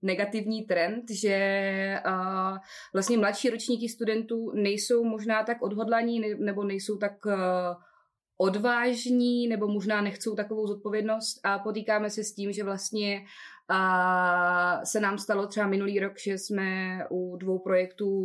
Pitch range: 180-210 Hz